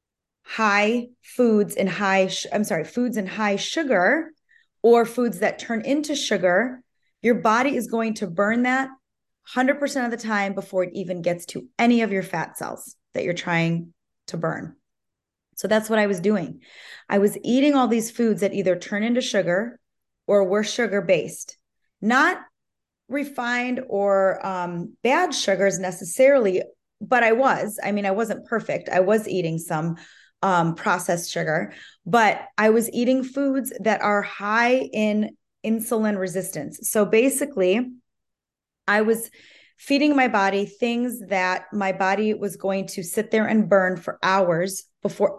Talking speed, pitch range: 155 wpm, 190-245 Hz